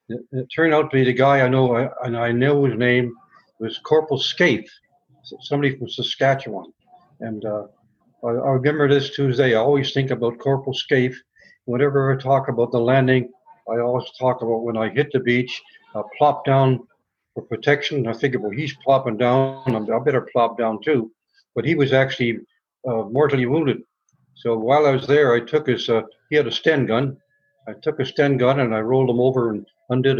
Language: English